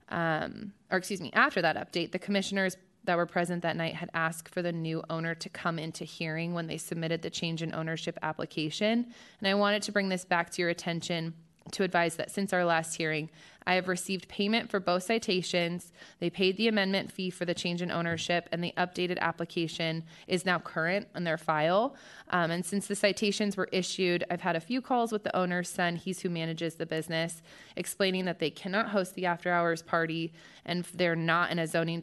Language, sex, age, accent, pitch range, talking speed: English, female, 20-39, American, 165-195 Hz, 210 wpm